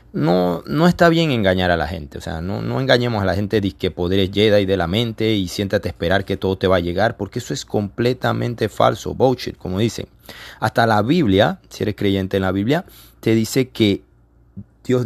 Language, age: Spanish, 30-49